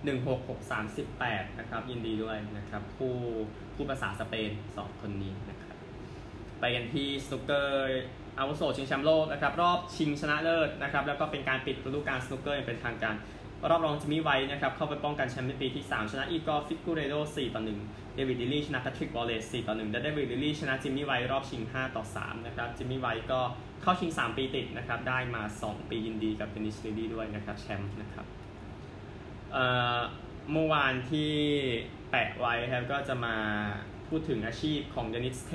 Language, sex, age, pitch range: Thai, male, 20-39, 110-135 Hz